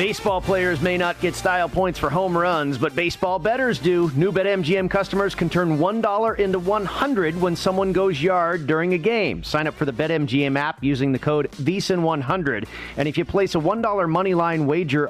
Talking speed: 190 wpm